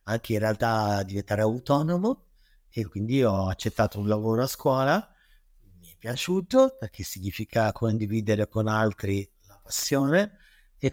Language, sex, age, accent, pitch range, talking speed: Italian, male, 50-69, native, 100-125 Hz, 130 wpm